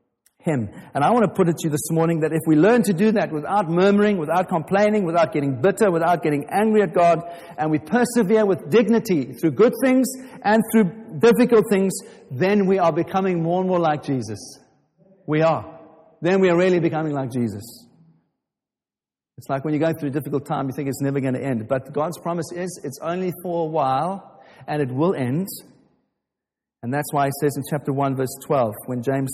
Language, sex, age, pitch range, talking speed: English, male, 50-69, 145-205 Hz, 205 wpm